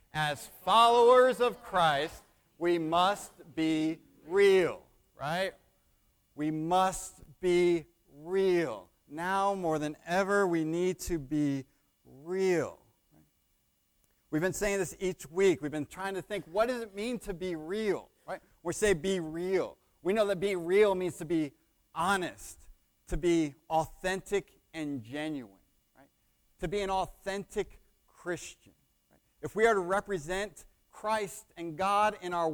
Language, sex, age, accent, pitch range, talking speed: English, male, 40-59, American, 150-190 Hz, 140 wpm